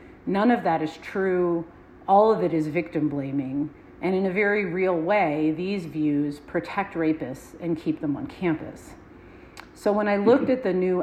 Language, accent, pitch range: English, American, 160-195 Hz